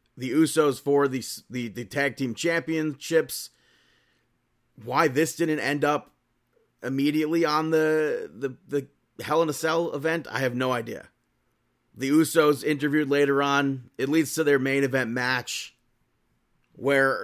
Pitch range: 125-150 Hz